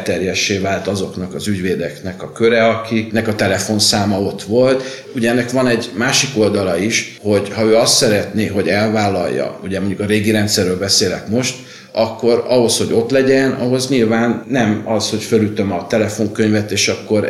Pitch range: 100-130 Hz